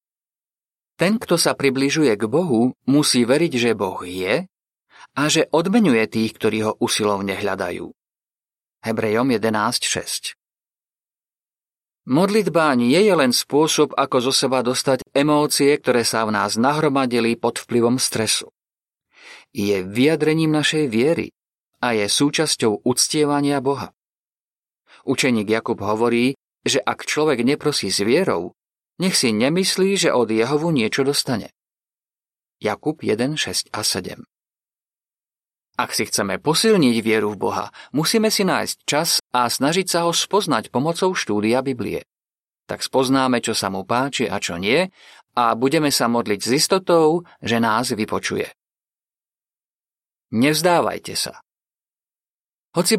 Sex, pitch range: male, 115-160 Hz